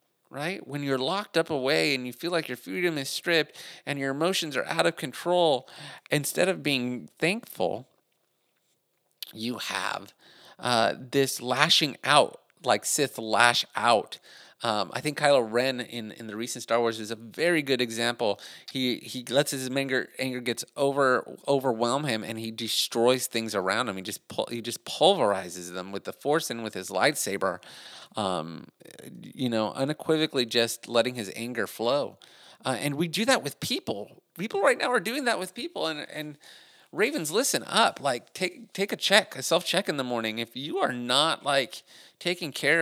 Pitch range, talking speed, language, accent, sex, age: 115-155 Hz, 180 wpm, English, American, male, 30-49